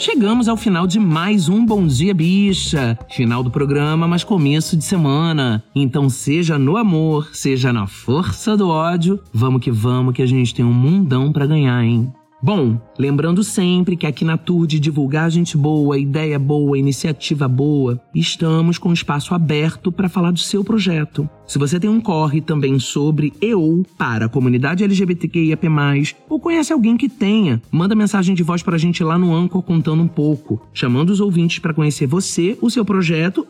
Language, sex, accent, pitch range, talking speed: Portuguese, male, Brazilian, 140-185 Hz, 180 wpm